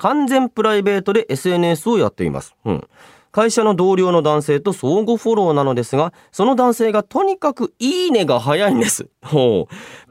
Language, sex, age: Japanese, male, 30-49